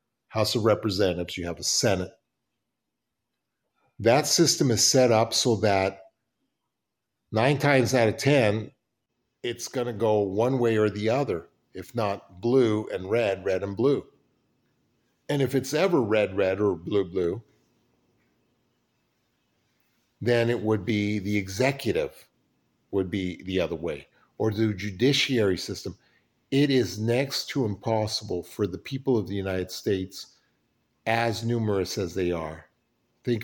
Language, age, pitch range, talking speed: English, 50-69, 100-130 Hz, 140 wpm